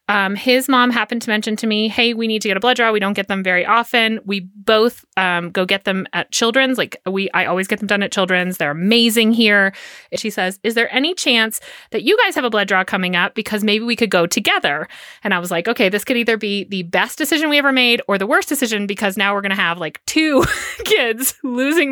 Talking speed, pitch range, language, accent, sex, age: 255 wpm, 185-235 Hz, English, American, female, 30-49